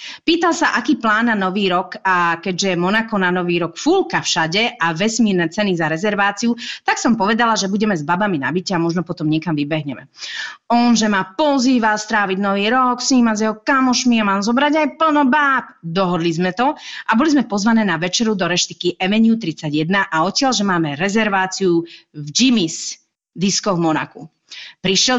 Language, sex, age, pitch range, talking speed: Slovak, female, 30-49, 175-230 Hz, 185 wpm